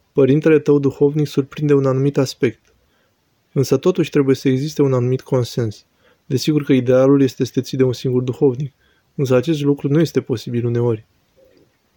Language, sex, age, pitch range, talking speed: Romanian, male, 20-39, 125-145 Hz, 160 wpm